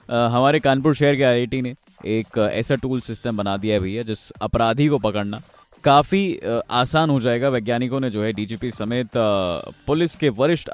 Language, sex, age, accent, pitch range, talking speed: Hindi, male, 20-39, native, 120-155 Hz, 175 wpm